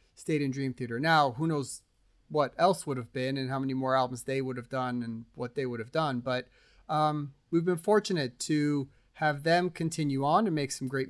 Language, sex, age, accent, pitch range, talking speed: English, male, 30-49, American, 135-170 Hz, 220 wpm